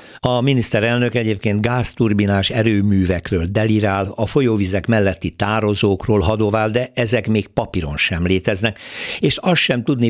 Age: 60-79